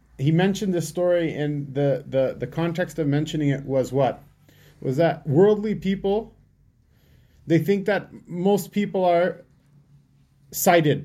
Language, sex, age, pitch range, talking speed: English, male, 30-49, 145-180 Hz, 135 wpm